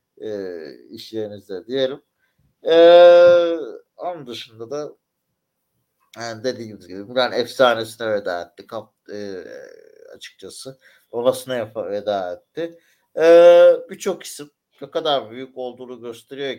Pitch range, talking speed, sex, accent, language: 115-170 Hz, 100 wpm, male, native, Turkish